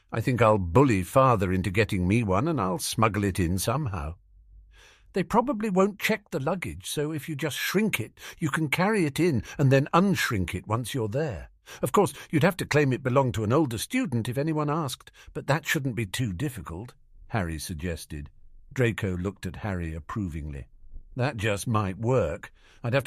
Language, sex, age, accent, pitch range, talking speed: English, male, 50-69, British, 90-145 Hz, 190 wpm